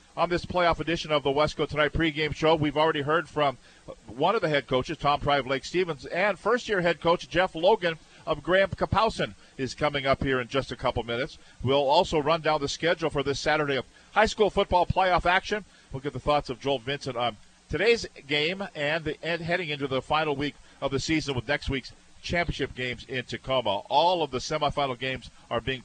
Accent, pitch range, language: American, 135-170 Hz, English